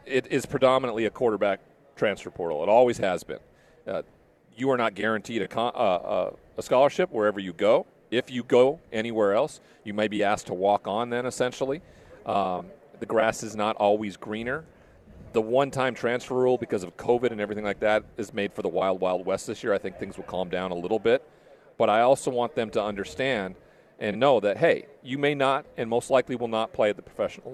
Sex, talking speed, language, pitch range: male, 205 wpm, English, 110-135 Hz